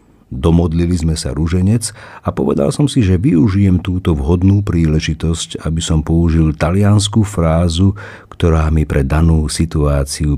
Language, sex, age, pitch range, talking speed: Slovak, male, 50-69, 75-100 Hz, 135 wpm